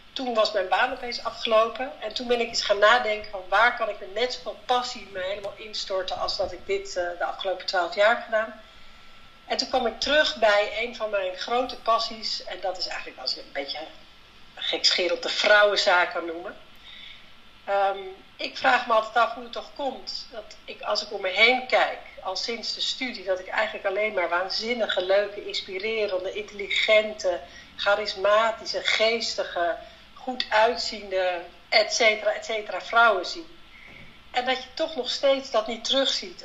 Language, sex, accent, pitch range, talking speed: Dutch, female, Dutch, 190-245 Hz, 180 wpm